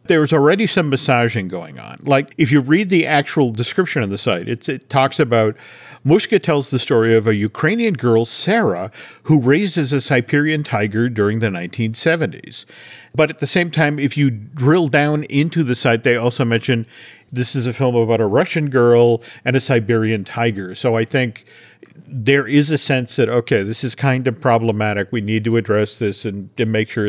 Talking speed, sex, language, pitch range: 195 wpm, male, English, 115-155 Hz